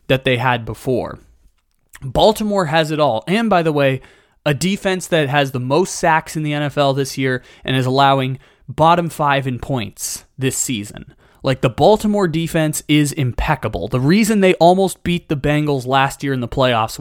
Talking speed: 180 wpm